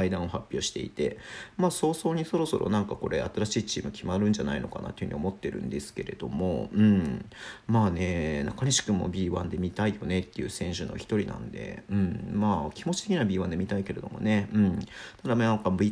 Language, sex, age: Japanese, male, 50-69